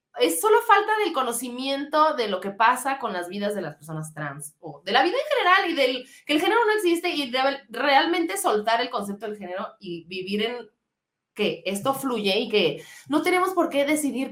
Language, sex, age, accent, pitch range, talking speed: Spanish, female, 30-49, Mexican, 225-325 Hz, 210 wpm